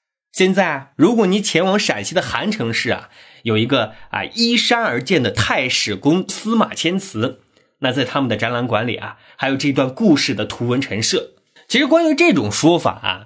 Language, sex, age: Chinese, male, 30-49